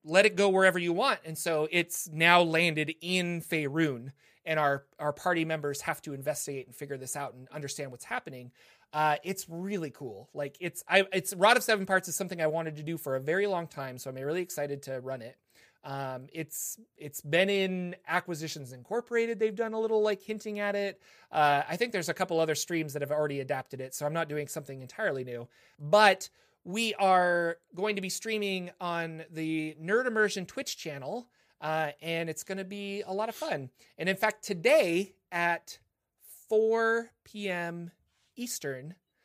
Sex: male